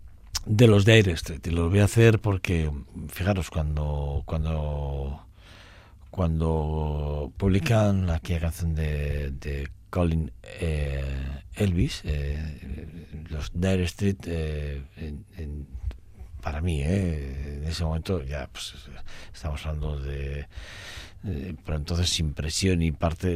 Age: 60-79